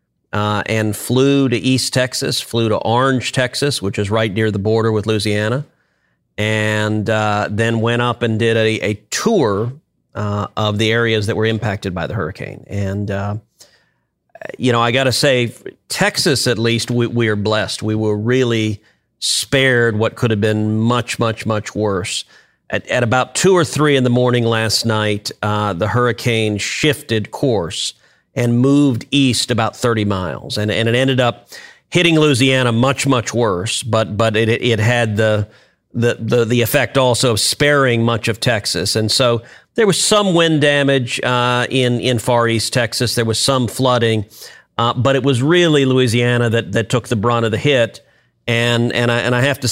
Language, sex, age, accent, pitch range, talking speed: English, male, 40-59, American, 110-125 Hz, 180 wpm